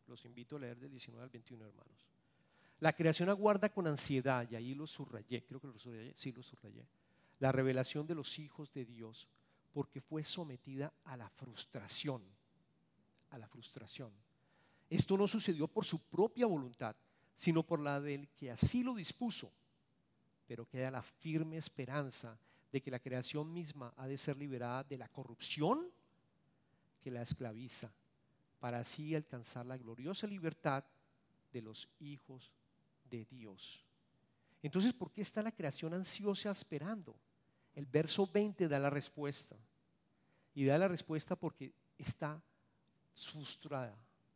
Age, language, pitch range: 50-69, English, 125-160 Hz